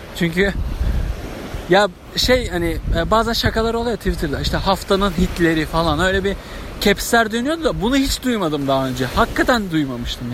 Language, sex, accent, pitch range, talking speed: Turkish, male, native, 180-240 Hz, 140 wpm